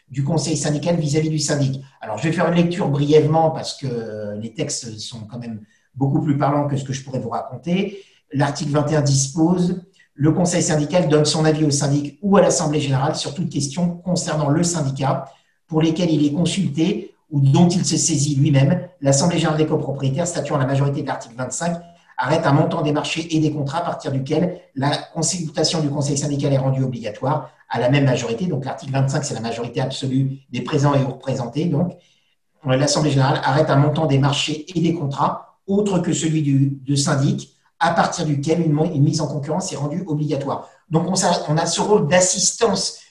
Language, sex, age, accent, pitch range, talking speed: French, male, 50-69, French, 140-165 Hz, 200 wpm